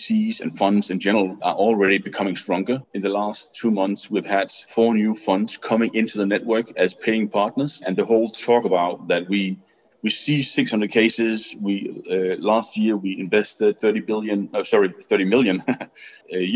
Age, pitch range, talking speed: 30-49, 95-115 Hz, 180 wpm